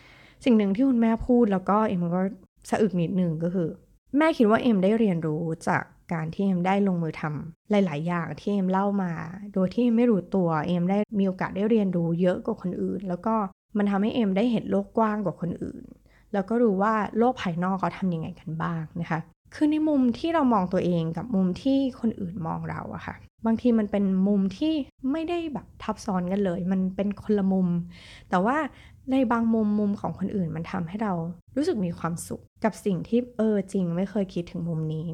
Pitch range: 175-225 Hz